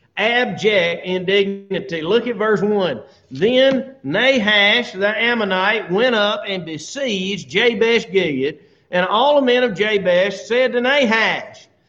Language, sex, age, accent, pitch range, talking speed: English, male, 40-59, American, 175-255 Hz, 125 wpm